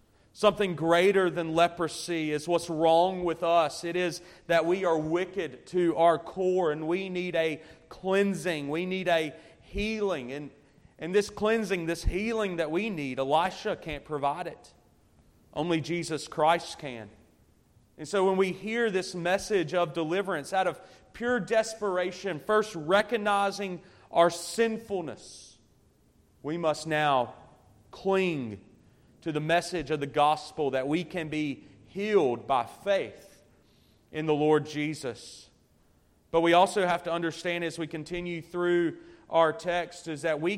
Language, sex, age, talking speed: English, male, 30-49, 145 wpm